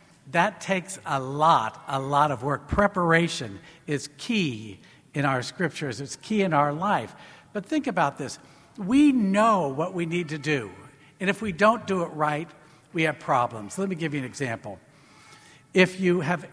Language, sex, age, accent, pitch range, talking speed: English, male, 60-79, American, 145-190 Hz, 180 wpm